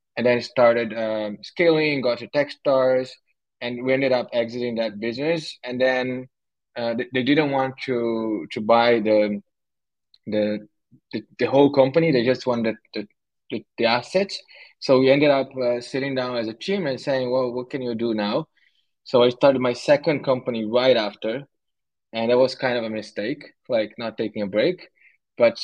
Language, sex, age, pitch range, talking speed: English, male, 20-39, 115-135 Hz, 185 wpm